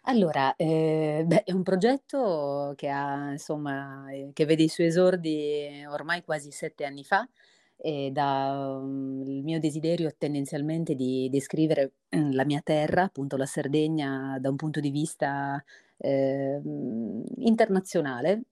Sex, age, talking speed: female, 30-49, 125 wpm